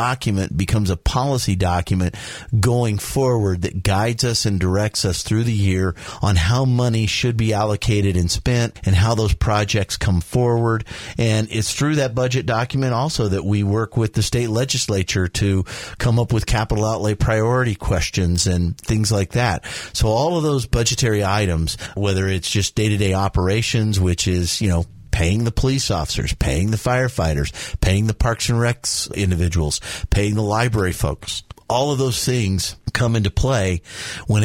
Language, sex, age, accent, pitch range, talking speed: English, male, 40-59, American, 95-115 Hz, 170 wpm